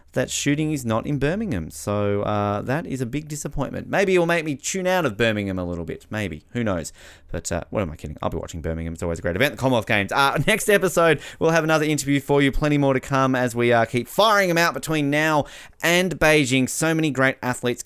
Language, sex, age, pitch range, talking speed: English, male, 30-49, 105-155 Hz, 250 wpm